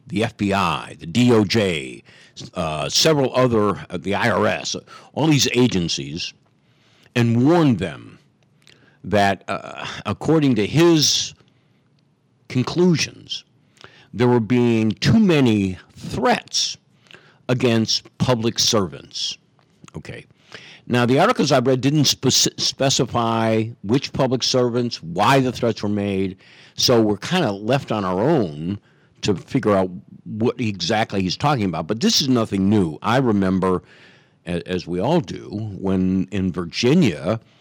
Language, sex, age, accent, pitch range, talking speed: English, male, 60-79, American, 105-150 Hz, 125 wpm